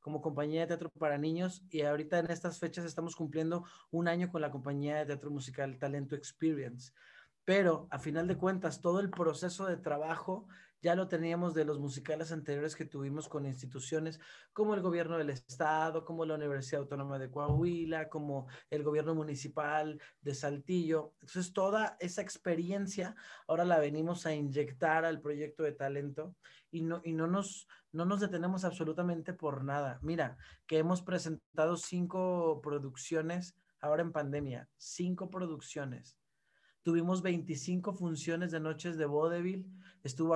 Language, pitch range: Spanish, 150-175 Hz